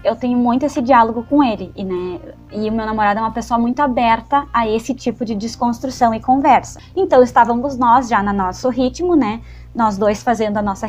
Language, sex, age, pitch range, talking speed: Portuguese, female, 20-39, 230-300 Hz, 210 wpm